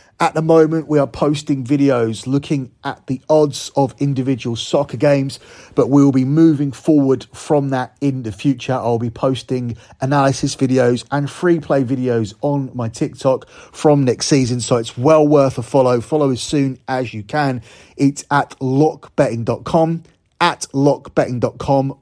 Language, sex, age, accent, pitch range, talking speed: English, male, 30-49, British, 120-145 Hz, 160 wpm